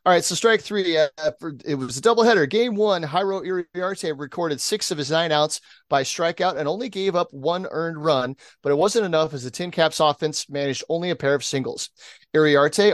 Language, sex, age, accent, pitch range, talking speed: English, male, 30-49, American, 145-180 Hz, 215 wpm